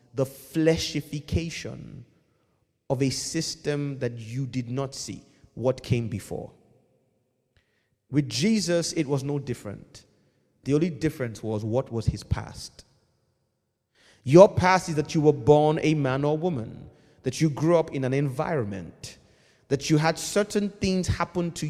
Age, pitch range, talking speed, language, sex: 30-49, 110-150 Hz, 145 wpm, English, male